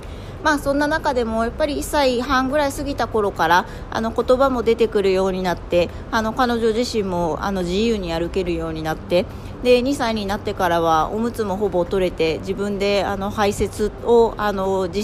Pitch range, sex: 175-230 Hz, female